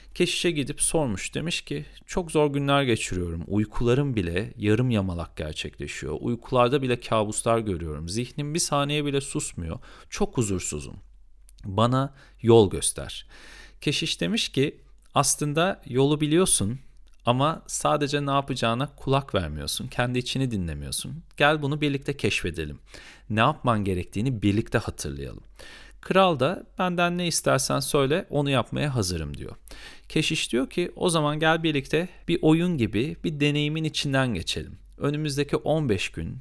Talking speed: 130 wpm